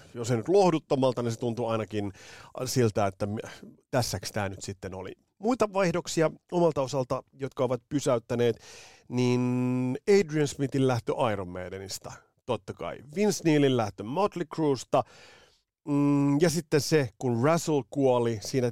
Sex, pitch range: male, 105-145 Hz